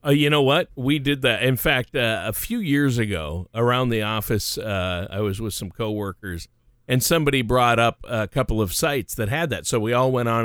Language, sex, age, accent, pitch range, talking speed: English, male, 50-69, American, 110-135 Hz, 225 wpm